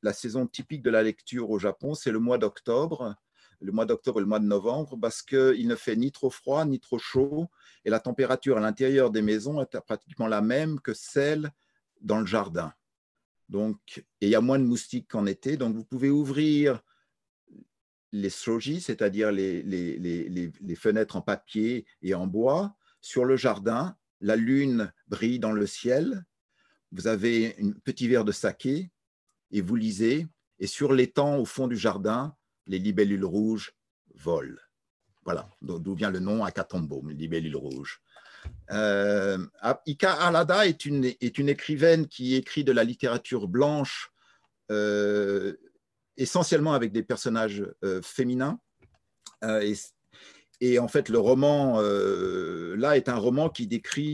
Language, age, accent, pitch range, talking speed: French, 50-69, French, 105-140 Hz, 165 wpm